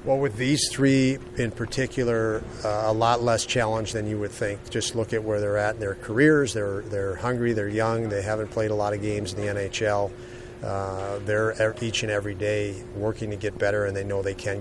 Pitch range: 100-115 Hz